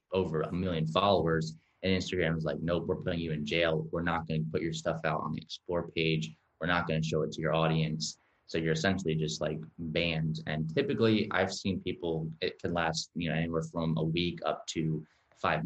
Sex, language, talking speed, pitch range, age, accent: male, English, 215 wpm, 80-90 Hz, 20-39, American